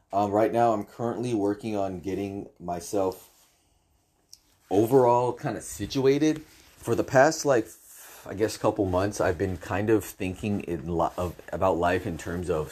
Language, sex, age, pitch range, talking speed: English, male, 30-49, 80-110 Hz, 160 wpm